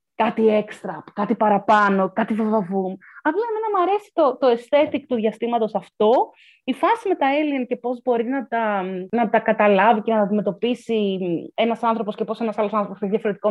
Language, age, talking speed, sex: Greek, 20-39, 185 wpm, female